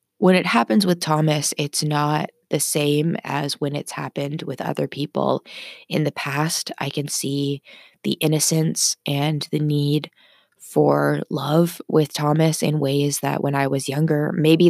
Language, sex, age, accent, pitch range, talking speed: English, female, 20-39, American, 140-155 Hz, 160 wpm